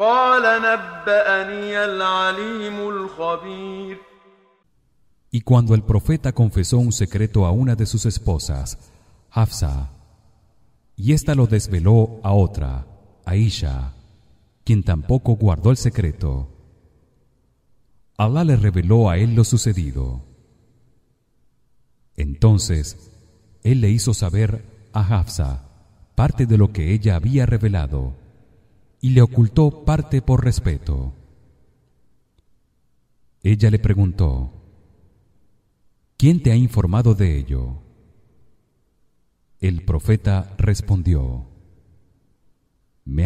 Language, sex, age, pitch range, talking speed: English, male, 40-59, 85-125 Hz, 90 wpm